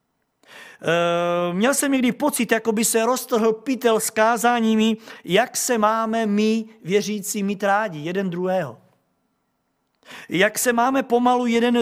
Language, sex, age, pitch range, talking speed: Czech, male, 50-69, 205-245 Hz, 125 wpm